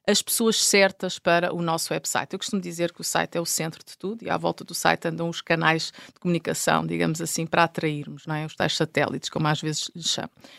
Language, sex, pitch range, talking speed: Portuguese, female, 165-210 Hz, 225 wpm